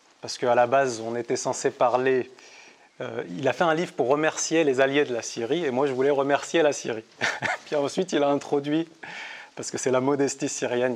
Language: French